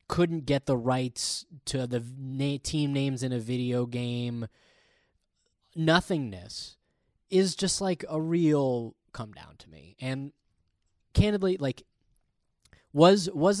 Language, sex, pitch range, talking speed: English, male, 110-155 Hz, 120 wpm